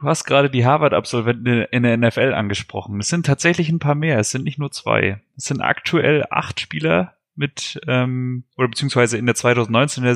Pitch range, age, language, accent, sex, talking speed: 115-145 Hz, 30-49, German, German, male, 200 wpm